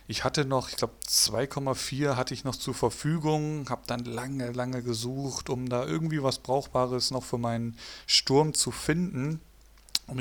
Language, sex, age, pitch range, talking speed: German, male, 40-59, 115-140 Hz, 165 wpm